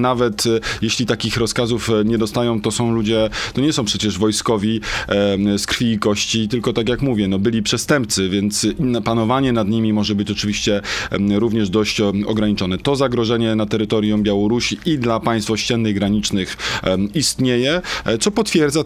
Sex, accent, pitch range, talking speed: male, native, 110-125 Hz, 150 wpm